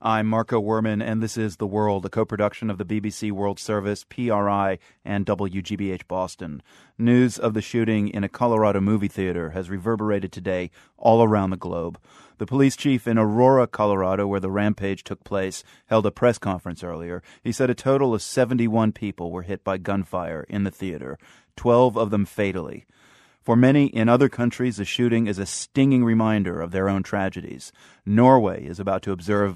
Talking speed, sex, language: 180 wpm, male, English